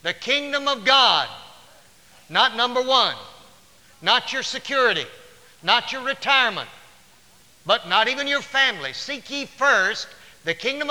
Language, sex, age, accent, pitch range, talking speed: English, male, 60-79, American, 200-265 Hz, 125 wpm